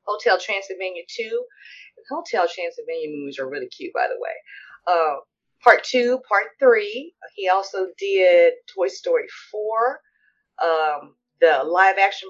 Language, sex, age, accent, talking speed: English, female, 30-49, American, 130 wpm